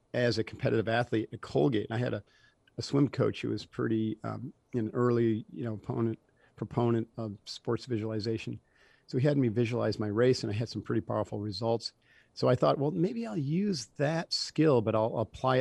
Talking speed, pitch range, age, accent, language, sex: 200 wpm, 110-125 Hz, 50-69, American, English, male